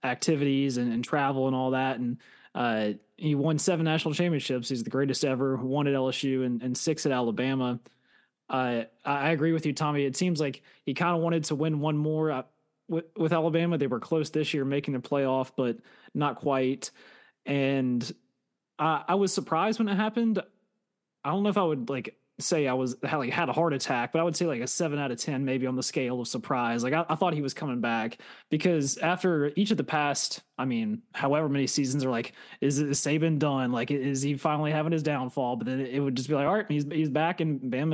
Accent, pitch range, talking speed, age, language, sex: American, 130-160 Hz, 225 wpm, 20-39, English, male